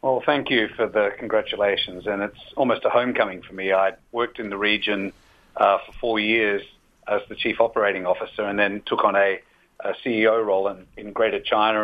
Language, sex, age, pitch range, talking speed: English, male, 50-69, 110-140 Hz, 200 wpm